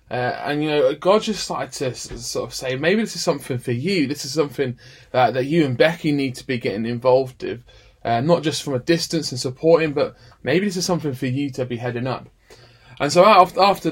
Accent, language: British, English